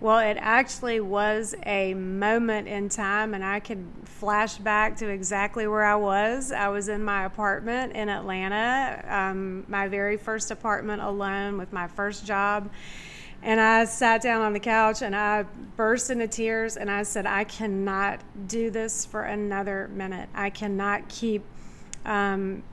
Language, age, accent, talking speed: English, 30-49, American, 160 wpm